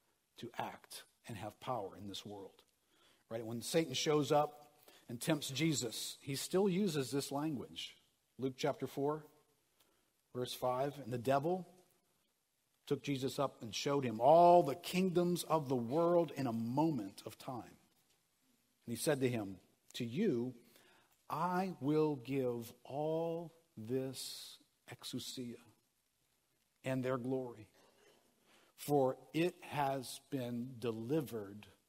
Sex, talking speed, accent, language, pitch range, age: male, 125 wpm, American, English, 120-150 Hz, 50-69